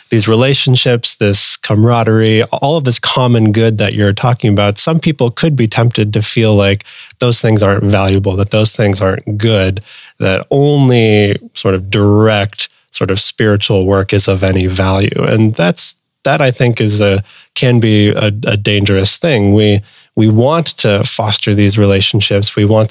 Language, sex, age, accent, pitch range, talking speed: English, male, 20-39, American, 100-120 Hz, 170 wpm